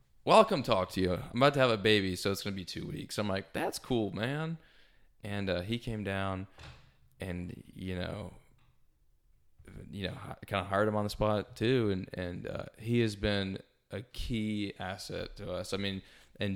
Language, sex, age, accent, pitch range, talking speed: English, male, 20-39, American, 90-105 Hz, 195 wpm